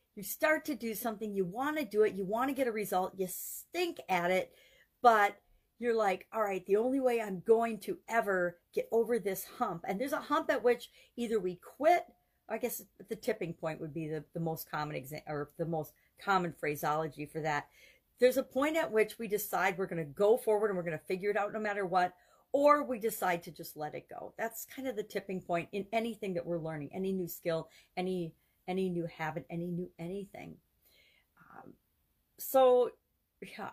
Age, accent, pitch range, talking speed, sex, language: 50-69, American, 170-225 Hz, 210 wpm, female, English